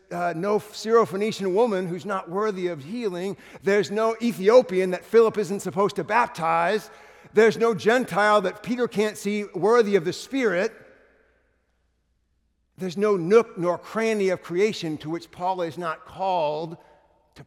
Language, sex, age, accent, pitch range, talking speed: English, male, 60-79, American, 120-185 Hz, 150 wpm